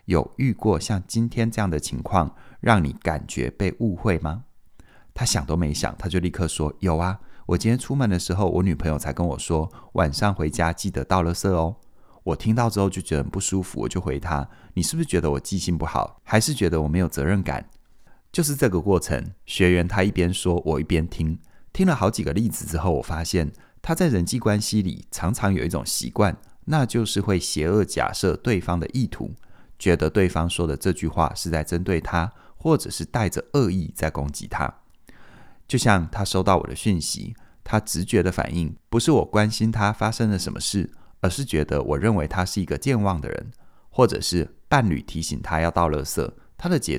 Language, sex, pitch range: Chinese, male, 80-105 Hz